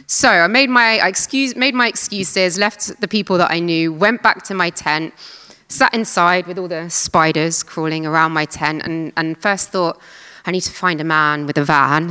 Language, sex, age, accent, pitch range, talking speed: English, female, 20-39, British, 160-215 Hz, 215 wpm